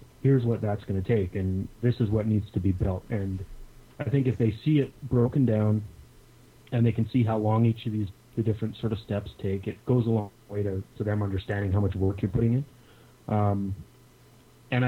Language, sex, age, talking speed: English, male, 30-49, 220 wpm